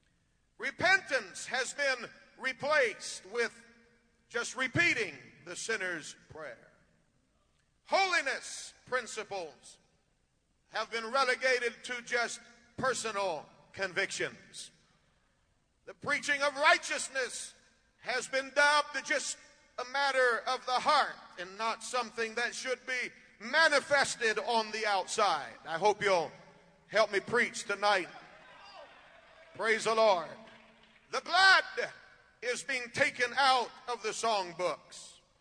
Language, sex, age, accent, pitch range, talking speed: English, male, 40-59, American, 225-280 Hz, 105 wpm